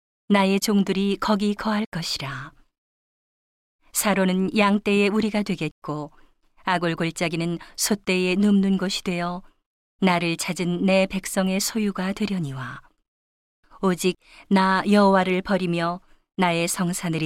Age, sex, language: 40-59, female, Korean